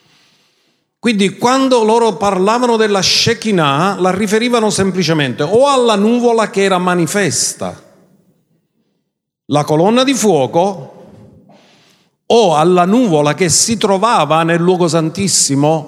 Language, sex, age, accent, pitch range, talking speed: Italian, male, 50-69, native, 150-215 Hz, 105 wpm